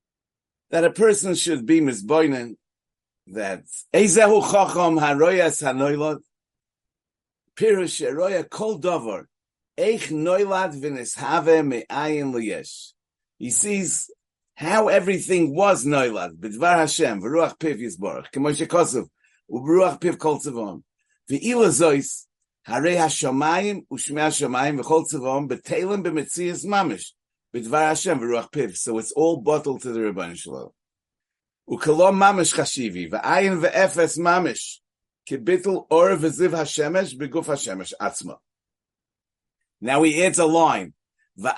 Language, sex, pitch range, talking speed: English, male, 140-185 Hz, 80 wpm